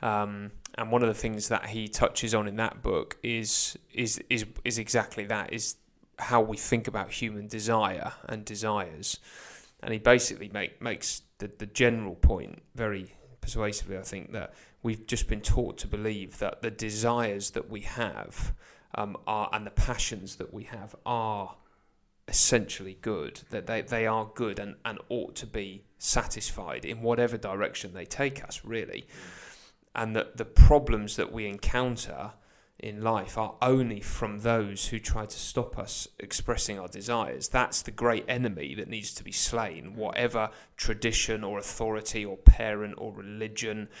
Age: 30-49